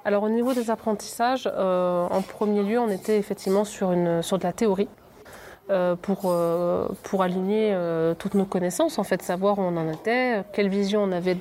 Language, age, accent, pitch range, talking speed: French, 30-49, French, 185-215 Hz, 200 wpm